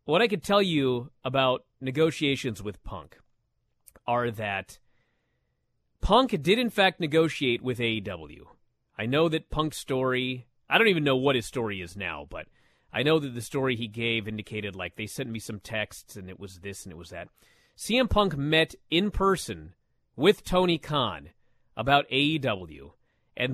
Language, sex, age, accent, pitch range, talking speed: English, male, 30-49, American, 115-175 Hz, 170 wpm